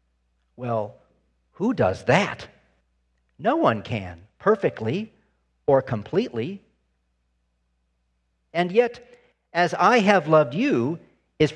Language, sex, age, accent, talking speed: English, male, 50-69, American, 95 wpm